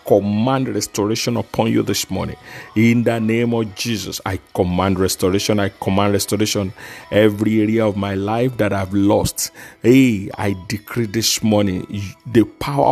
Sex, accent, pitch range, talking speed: male, Nigerian, 100-120 Hz, 150 wpm